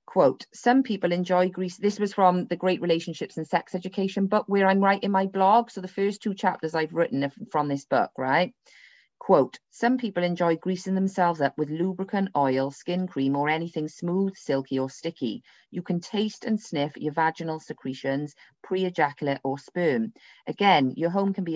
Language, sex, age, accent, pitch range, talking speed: English, female, 30-49, British, 145-185 Hz, 180 wpm